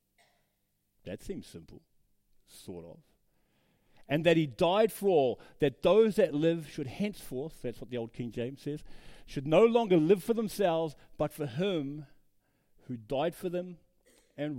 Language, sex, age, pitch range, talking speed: English, male, 40-59, 115-170 Hz, 155 wpm